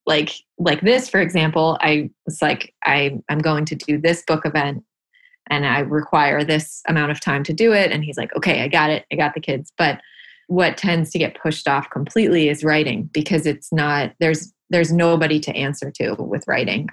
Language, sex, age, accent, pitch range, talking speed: English, female, 20-39, American, 145-170 Hz, 205 wpm